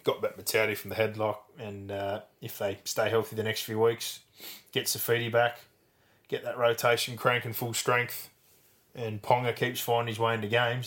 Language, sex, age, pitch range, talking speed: English, male, 20-39, 105-115 Hz, 180 wpm